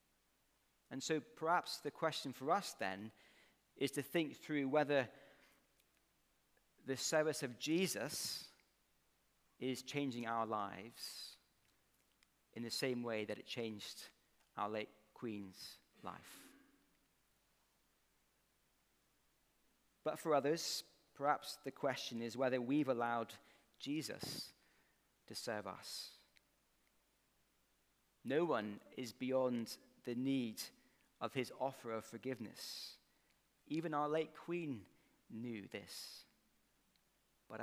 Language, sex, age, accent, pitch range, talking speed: English, male, 40-59, British, 115-145 Hz, 100 wpm